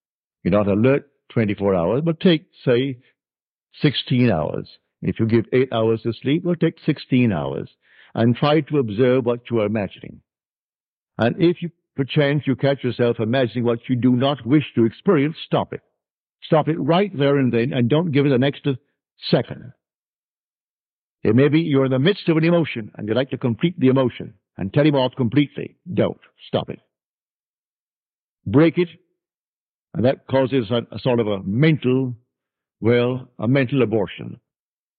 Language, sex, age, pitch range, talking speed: English, male, 60-79, 115-150 Hz, 170 wpm